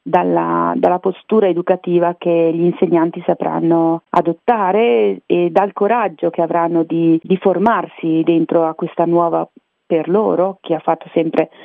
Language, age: Italian, 40-59